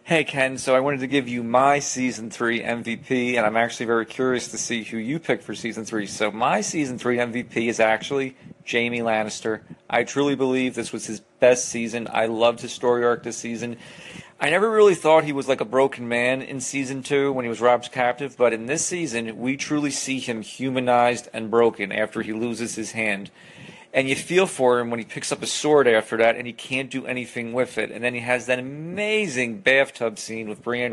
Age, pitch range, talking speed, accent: 40-59, 115-135 Hz, 220 wpm, American